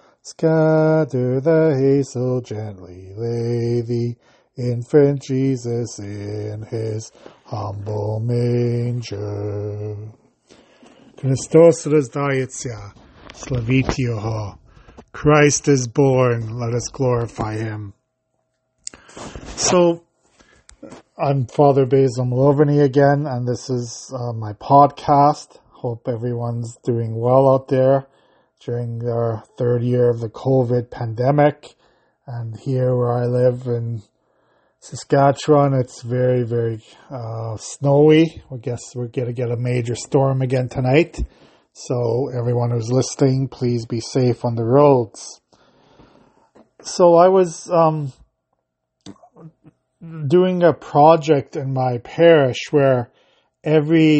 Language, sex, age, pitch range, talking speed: English, male, 40-59, 120-140 Hz, 100 wpm